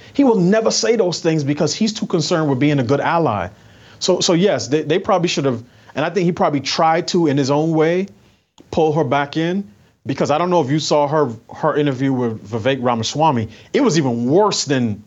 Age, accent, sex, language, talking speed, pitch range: 30-49, American, male, English, 225 wpm, 130-170 Hz